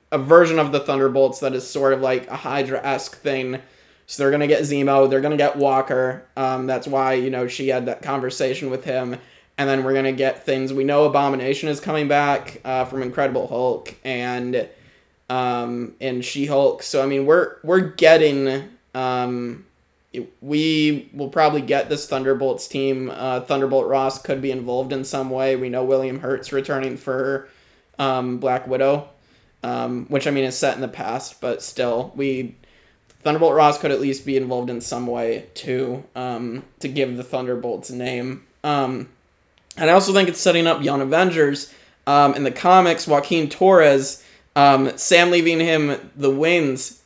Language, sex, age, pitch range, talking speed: English, male, 20-39, 130-145 Hz, 180 wpm